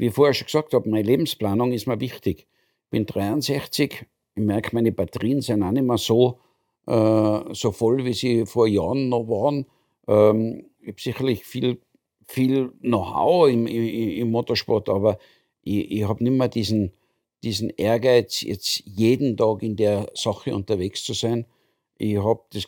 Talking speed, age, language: 165 wpm, 60-79, German